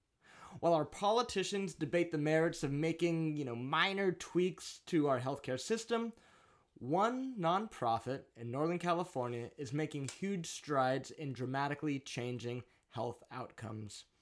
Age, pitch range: 20-39, 130-170 Hz